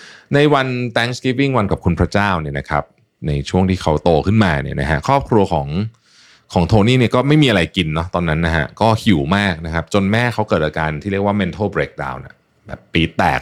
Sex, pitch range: male, 80-110 Hz